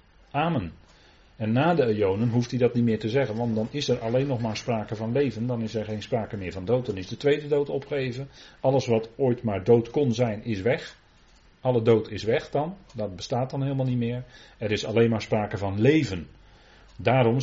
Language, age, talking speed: Dutch, 40-59, 220 wpm